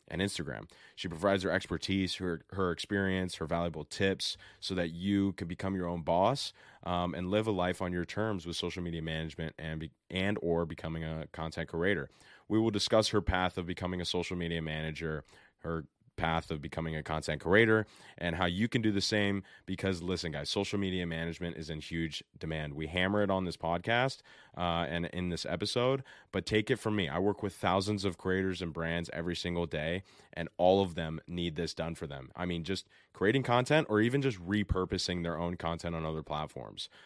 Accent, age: American, 20-39